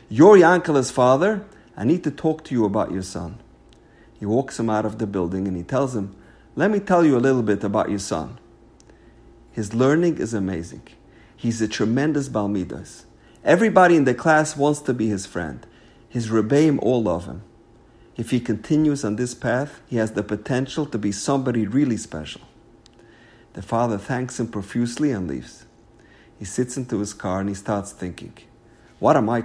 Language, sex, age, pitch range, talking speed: English, male, 50-69, 105-140 Hz, 180 wpm